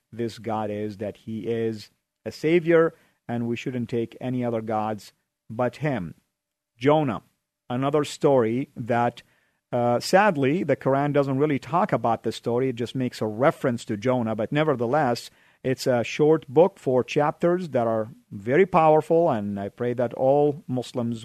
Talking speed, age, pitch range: 160 wpm, 50-69, 115-135 Hz